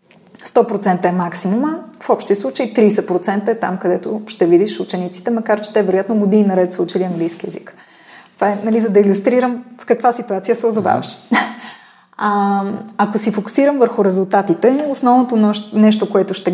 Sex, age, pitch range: female, 20-39, 195-235 Hz